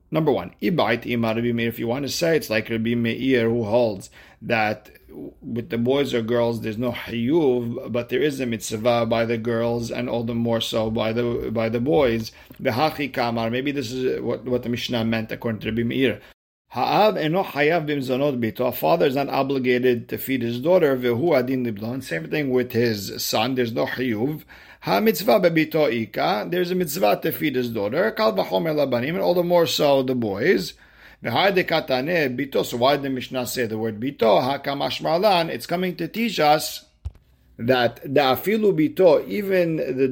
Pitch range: 115-150 Hz